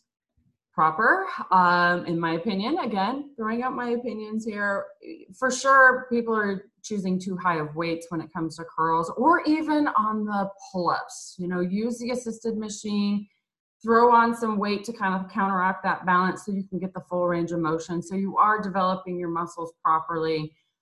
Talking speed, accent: 180 wpm, American